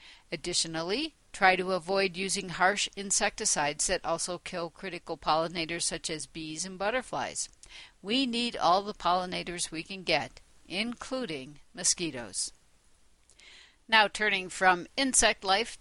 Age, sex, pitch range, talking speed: 60-79, female, 170-210 Hz, 120 wpm